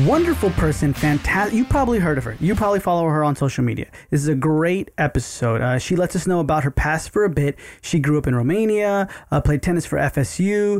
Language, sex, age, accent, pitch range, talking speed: English, male, 20-39, American, 135-170 Hz, 230 wpm